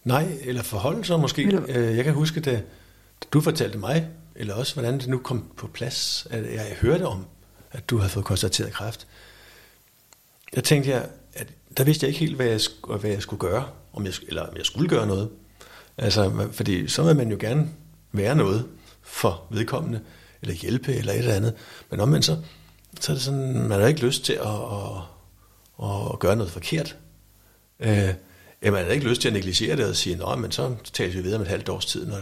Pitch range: 95-130 Hz